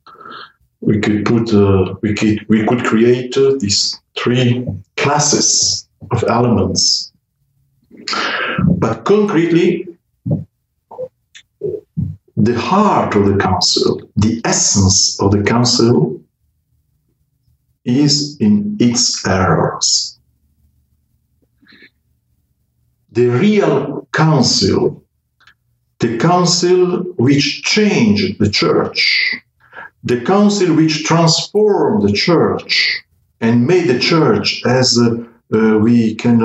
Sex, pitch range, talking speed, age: male, 110-160 Hz, 90 wpm, 50-69